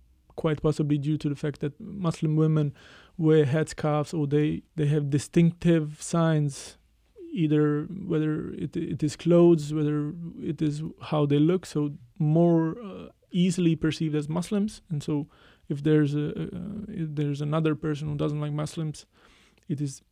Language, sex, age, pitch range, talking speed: English, male, 20-39, 150-165 Hz, 155 wpm